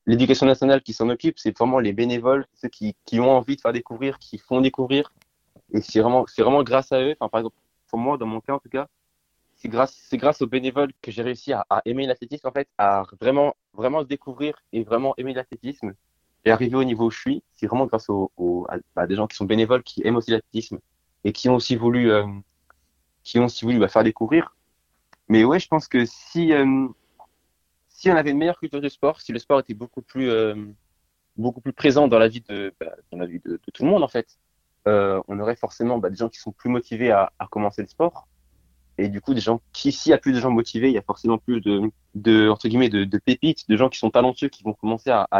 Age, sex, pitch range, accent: 20-39, male, 105-130 Hz, French